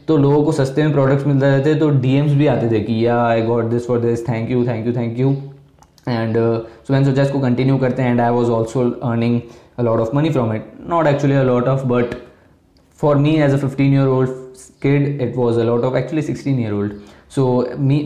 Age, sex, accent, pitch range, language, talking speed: 20-39, male, native, 120-140 Hz, Hindi, 90 wpm